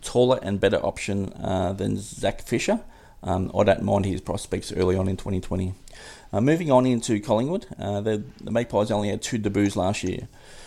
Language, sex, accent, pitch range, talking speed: English, male, Australian, 95-110 Hz, 185 wpm